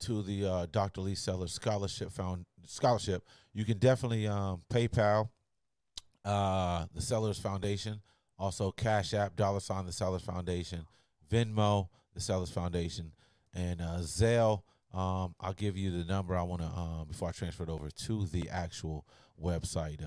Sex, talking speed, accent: male, 155 wpm, American